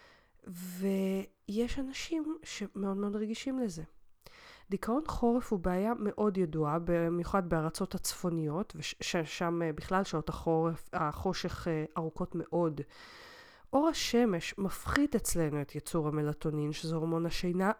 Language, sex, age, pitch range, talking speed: Hebrew, female, 30-49, 170-215 Hz, 105 wpm